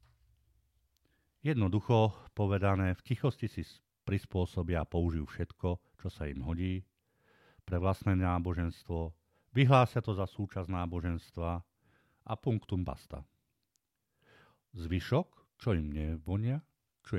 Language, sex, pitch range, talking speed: Slovak, male, 85-105 Hz, 100 wpm